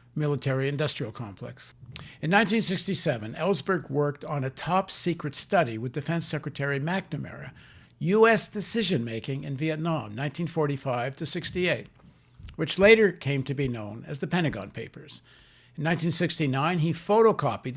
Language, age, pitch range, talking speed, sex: English, 60-79, 125-165 Hz, 120 wpm, male